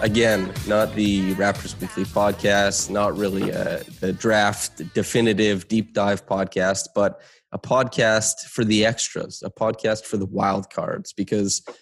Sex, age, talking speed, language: male, 20-39, 135 wpm, English